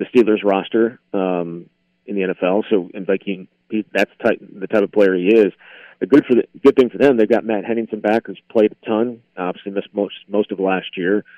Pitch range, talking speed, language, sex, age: 100-115 Hz, 205 wpm, English, male, 30-49